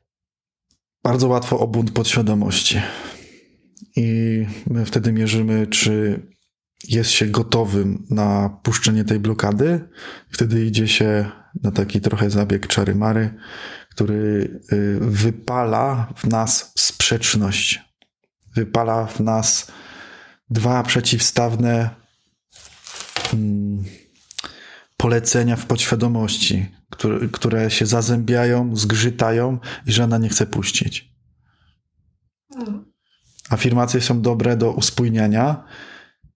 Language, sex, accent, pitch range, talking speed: Polish, male, native, 105-120 Hz, 85 wpm